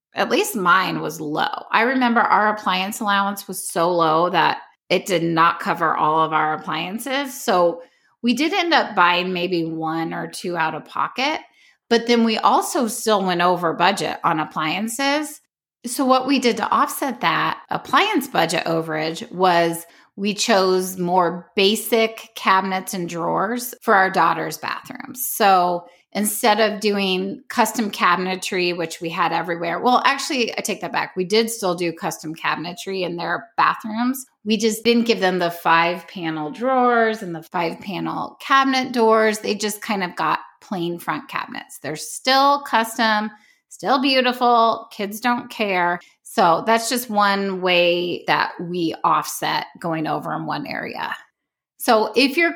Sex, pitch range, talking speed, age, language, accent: female, 175-235 Hz, 155 wpm, 30-49, English, American